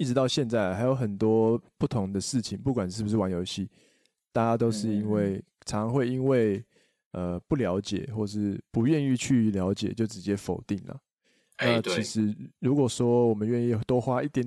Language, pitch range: Chinese, 100-120 Hz